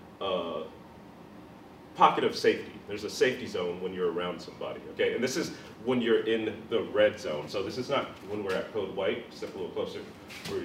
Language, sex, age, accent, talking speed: English, male, 30-49, American, 205 wpm